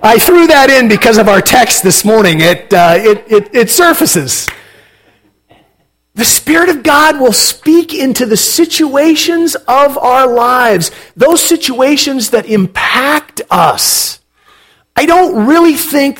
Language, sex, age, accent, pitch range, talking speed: English, male, 40-59, American, 185-305 Hz, 135 wpm